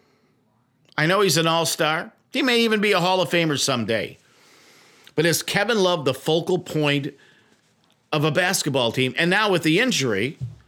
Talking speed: 170 wpm